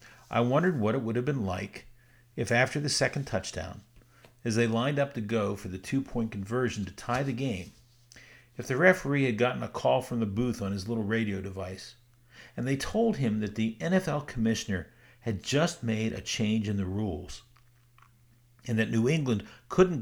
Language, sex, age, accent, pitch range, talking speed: English, male, 50-69, American, 115-140 Hz, 190 wpm